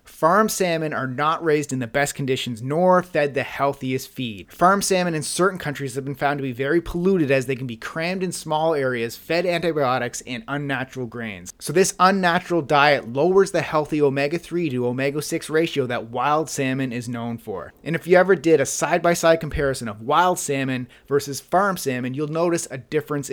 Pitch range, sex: 130-170 Hz, male